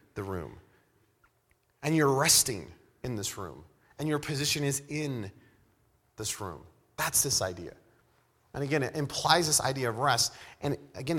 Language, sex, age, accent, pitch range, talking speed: English, male, 30-49, American, 115-155 Hz, 150 wpm